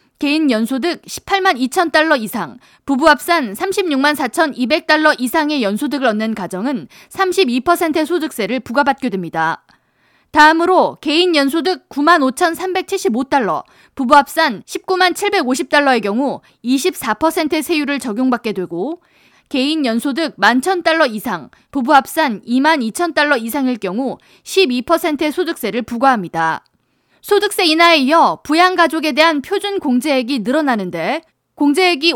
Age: 20-39